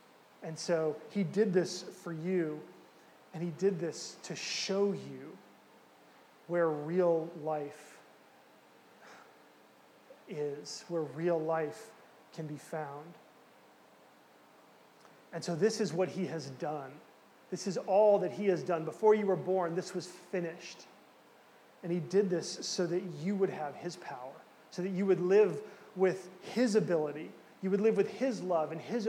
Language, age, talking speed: English, 30-49, 150 wpm